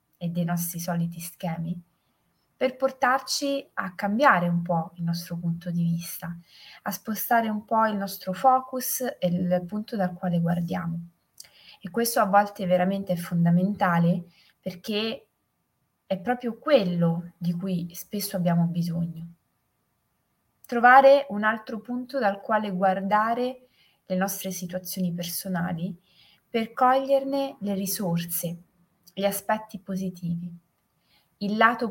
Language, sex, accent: Italian, female, native